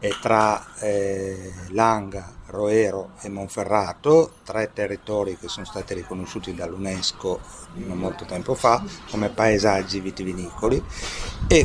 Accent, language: native, Italian